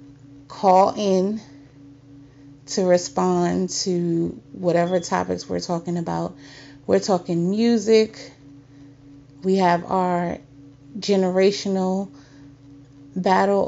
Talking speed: 80 wpm